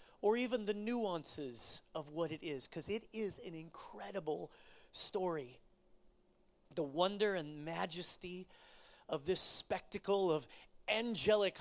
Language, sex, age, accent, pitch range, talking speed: English, male, 30-49, American, 170-215 Hz, 120 wpm